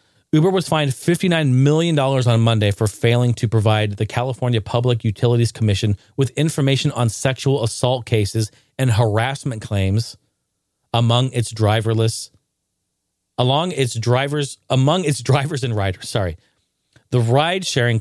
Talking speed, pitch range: 130 wpm, 110-135 Hz